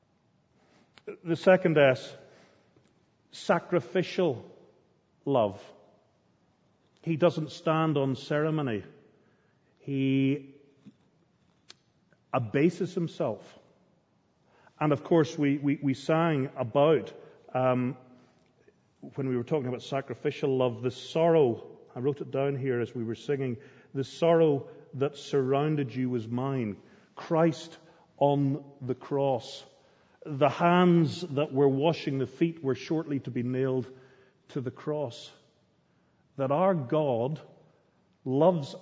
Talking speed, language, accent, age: 110 wpm, English, British, 40-59